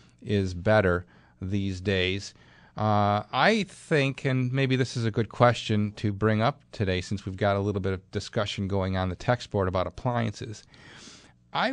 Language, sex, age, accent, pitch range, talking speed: English, male, 40-59, American, 95-115 Hz, 175 wpm